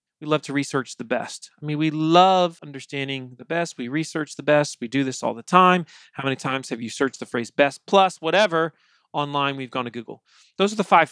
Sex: male